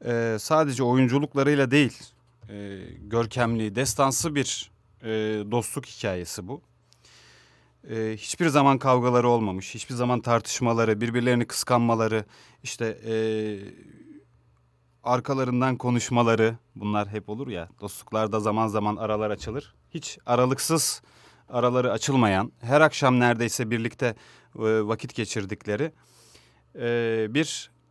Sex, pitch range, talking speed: male, 105-135 Hz, 105 wpm